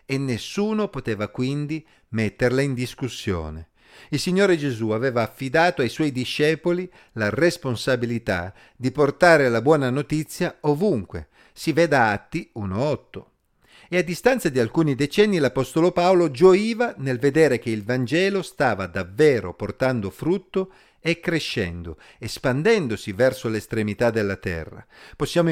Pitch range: 115-175 Hz